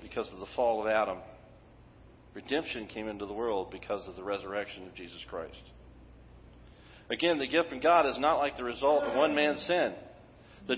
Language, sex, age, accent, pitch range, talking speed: English, male, 40-59, American, 110-150 Hz, 185 wpm